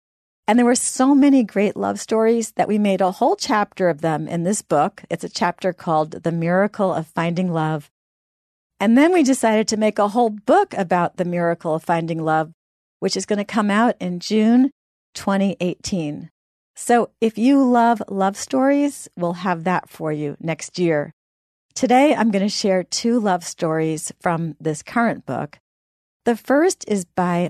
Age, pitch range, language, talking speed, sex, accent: 40-59, 165-215 Hz, English, 170 wpm, female, American